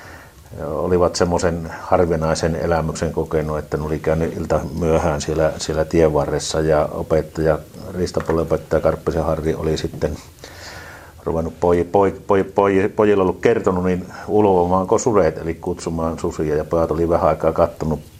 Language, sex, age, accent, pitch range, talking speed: Finnish, male, 60-79, native, 80-95 Hz, 130 wpm